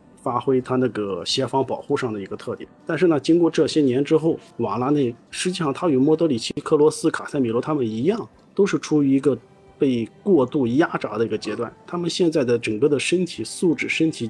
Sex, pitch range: male, 125-155 Hz